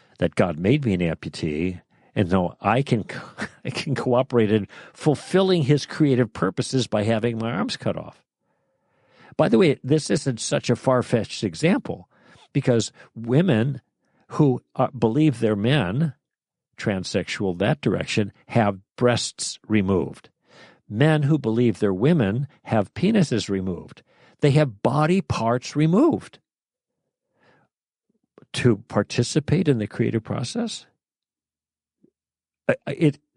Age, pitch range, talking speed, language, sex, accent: 60-79, 105-140 Hz, 120 wpm, English, male, American